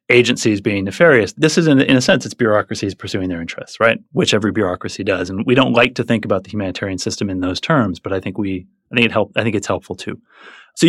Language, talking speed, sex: English, 220 wpm, male